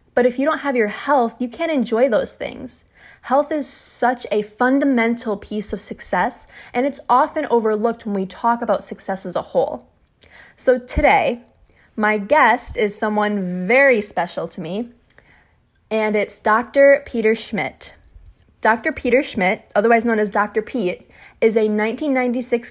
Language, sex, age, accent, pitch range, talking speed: English, female, 20-39, American, 200-250 Hz, 155 wpm